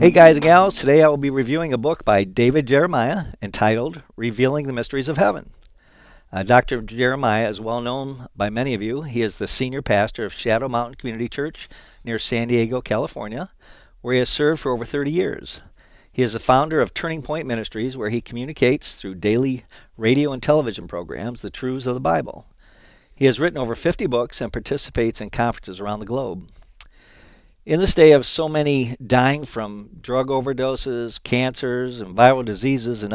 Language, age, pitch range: English, 50-69, 115-145 Hz